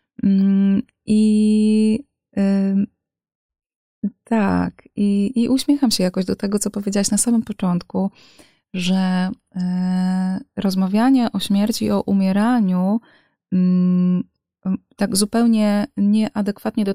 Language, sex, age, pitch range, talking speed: Polish, female, 20-39, 185-210 Hz, 100 wpm